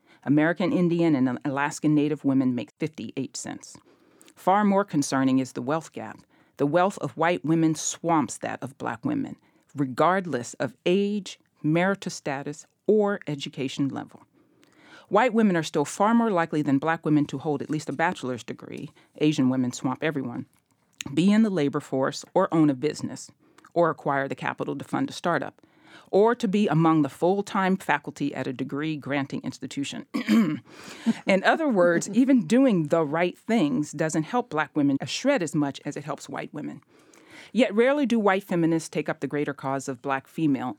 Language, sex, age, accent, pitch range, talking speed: English, female, 40-59, American, 140-190 Hz, 170 wpm